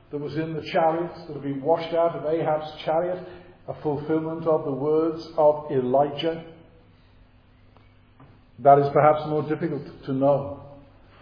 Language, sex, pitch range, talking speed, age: English, male, 120-165 Hz, 140 wpm, 50-69